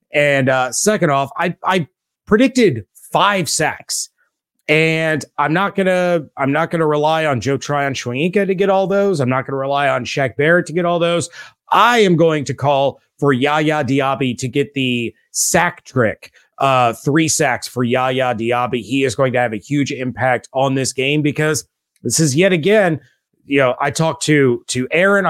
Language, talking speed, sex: English, 185 wpm, male